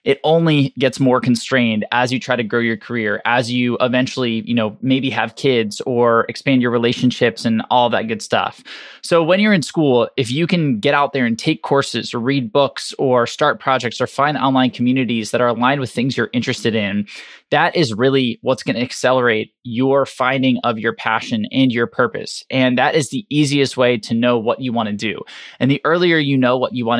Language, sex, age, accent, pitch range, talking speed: English, male, 20-39, American, 115-140 Hz, 215 wpm